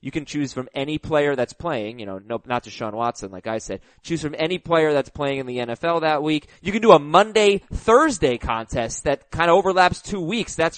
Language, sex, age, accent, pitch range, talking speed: English, male, 20-39, American, 125-190 Hz, 230 wpm